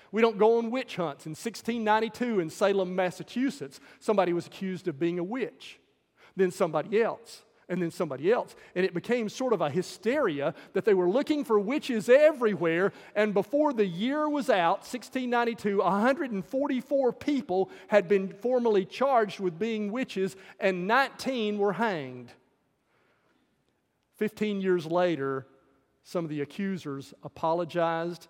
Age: 40-59